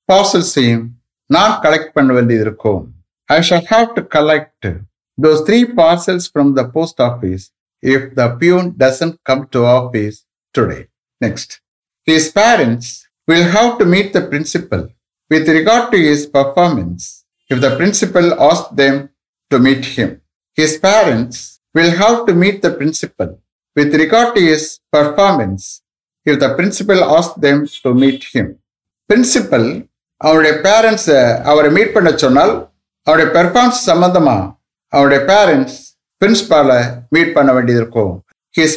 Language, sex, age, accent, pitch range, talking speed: English, male, 60-79, Indian, 125-180 Hz, 105 wpm